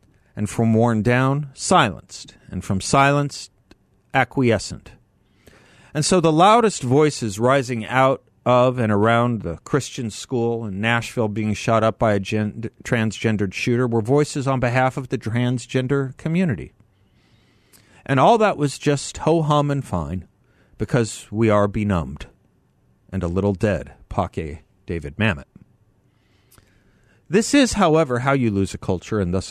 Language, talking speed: English, 140 wpm